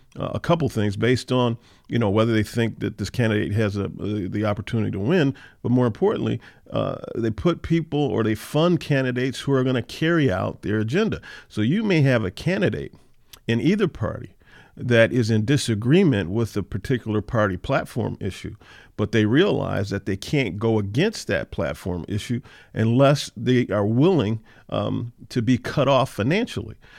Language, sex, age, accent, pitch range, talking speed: English, male, 50-69, American, 105-140 Hz, 175 wpm